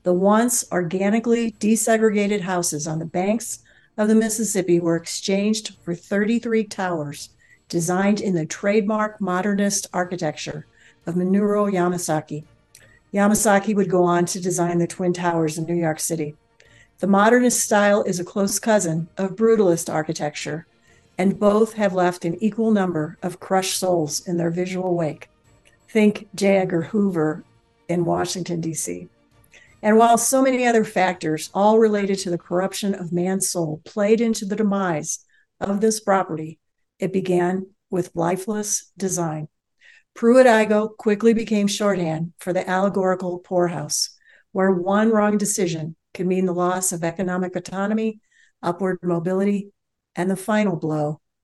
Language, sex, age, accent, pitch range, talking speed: English, female, 50-69, American, 170-205 Hz, 140 wpm